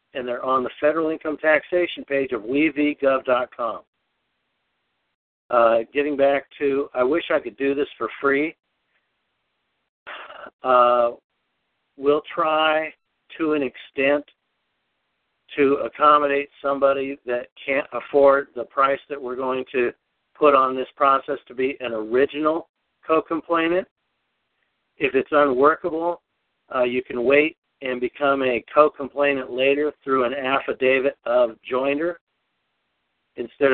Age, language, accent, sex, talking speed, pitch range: 50-69, English, American, male, 120 wpm, 125-145 Hz